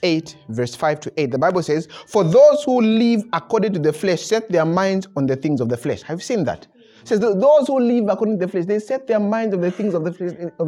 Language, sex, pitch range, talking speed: English, male, 155-235 Hz, 280 wpm